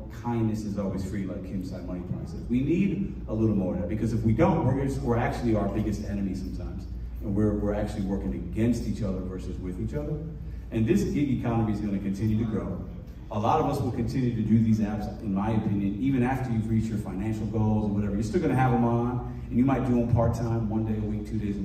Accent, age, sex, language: American, 30-49, male, English